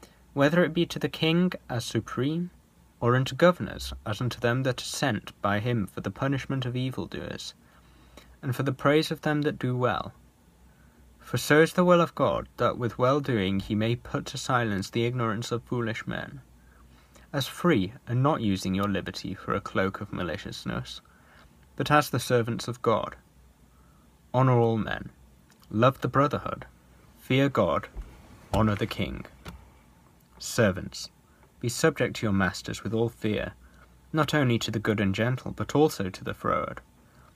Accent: British